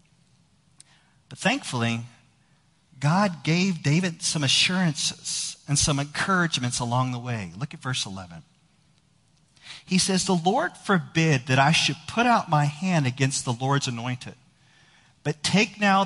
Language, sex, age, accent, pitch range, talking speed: English, male, 40-59, American, 130-165 Hz, 130 wpm